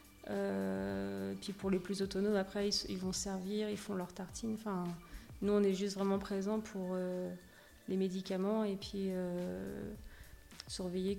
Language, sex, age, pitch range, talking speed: French, female, 30-49, 185-200 Hz, 155 wpm